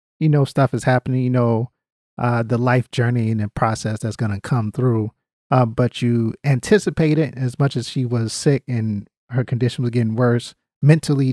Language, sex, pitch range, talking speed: English, male, 110-135 Hz, 195 wpm